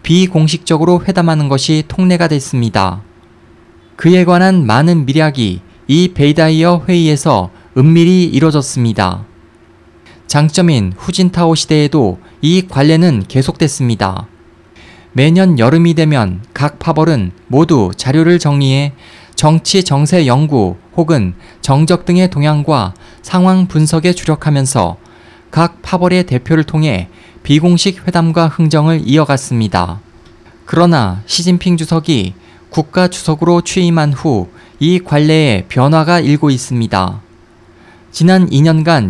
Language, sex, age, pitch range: Korean, male, 20-39, 115-165 Hz